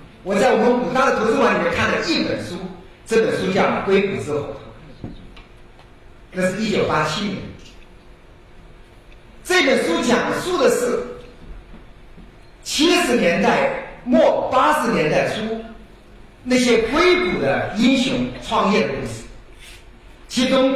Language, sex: Chinese, male